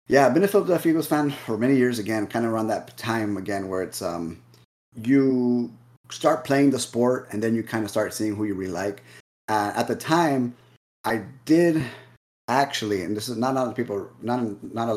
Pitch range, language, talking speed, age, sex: 100-125 Hz, English, 215 wpm, 30-49, male